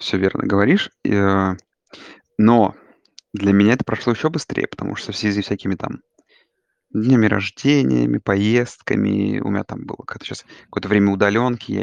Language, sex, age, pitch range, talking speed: Russian, male, 20-39, 100-115 Hz, 140 wpm